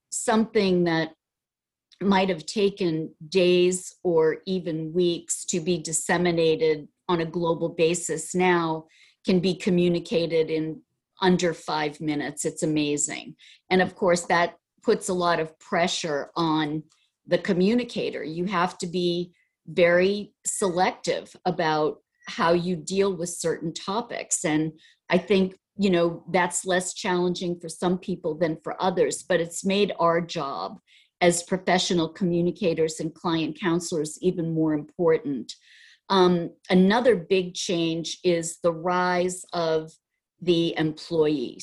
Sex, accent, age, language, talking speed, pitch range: female, American, 50-69, English, 130 wpm, 165-185 Hz